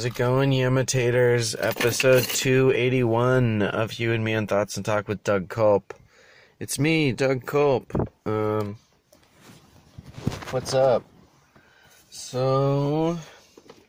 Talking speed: 110 wpm